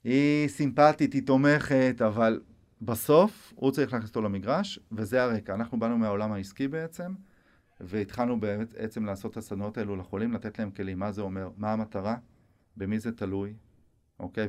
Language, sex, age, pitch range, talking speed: Hebrew, male, 30-49, 100-135 Hz, 155 wpm